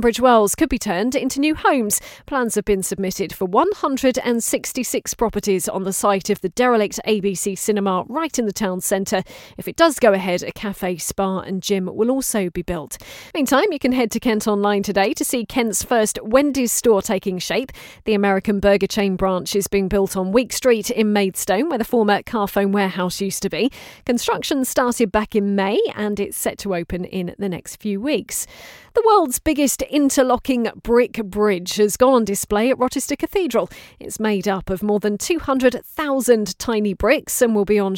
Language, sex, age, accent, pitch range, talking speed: English, female, 40-59, British, 195-245 Hz, 190 wpm